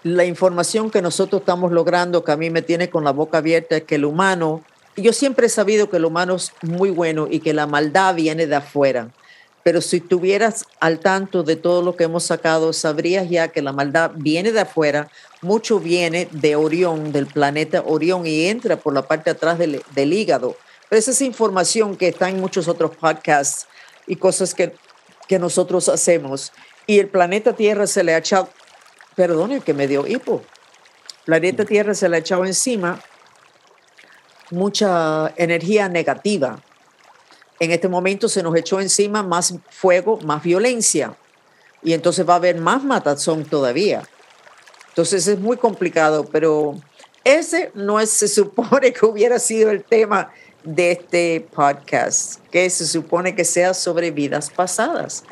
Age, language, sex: 50-69, Spanish, female